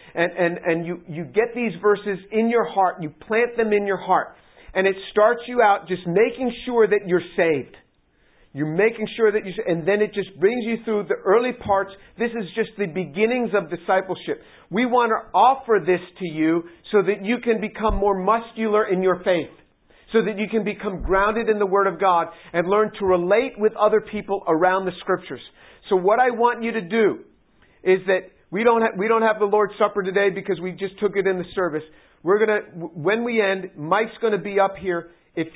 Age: 50-69